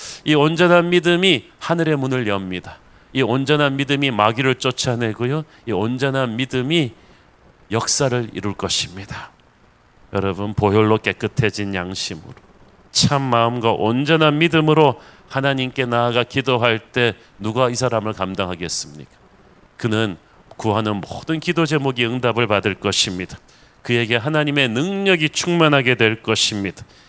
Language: Korean